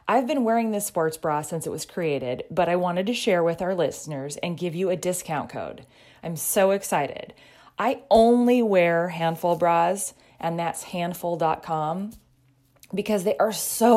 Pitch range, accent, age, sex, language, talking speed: 160-205 Hz, American, 30-49, female, English, 170 wpm